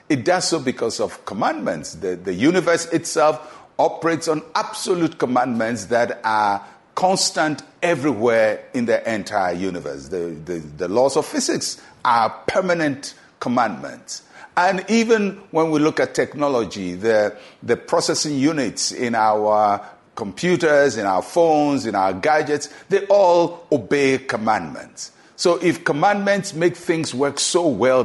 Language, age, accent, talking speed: English, 50-69, Nigerian, 135 wpm